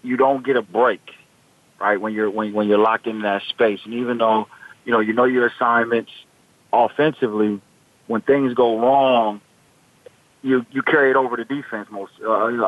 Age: 40-59